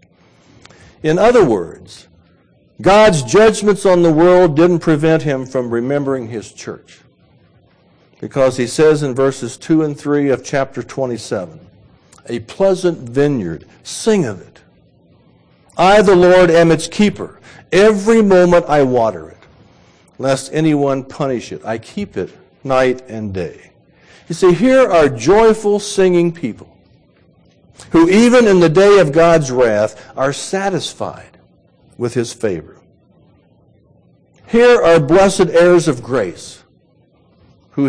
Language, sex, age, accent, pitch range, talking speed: English, male, 60-79, American, 130-180 Hz, 125 wpm